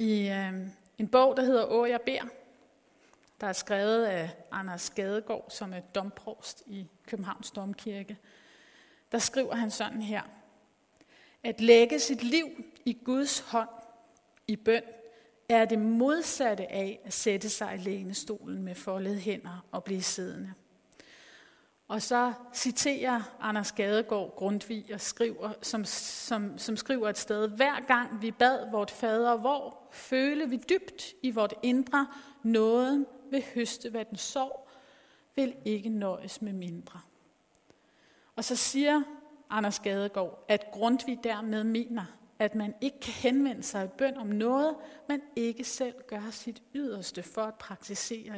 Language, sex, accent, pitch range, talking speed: Danish, female, native, 205-255 Hz, 140 wpm